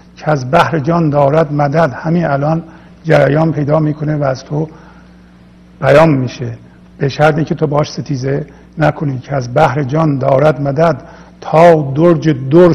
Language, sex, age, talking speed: Persian, male, 50-69, 150 wpm